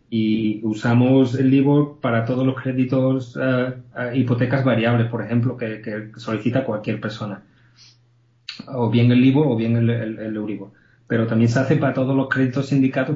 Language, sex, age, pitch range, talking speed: Spanish, male, 30-49, 115-135 Hz, 170 wpm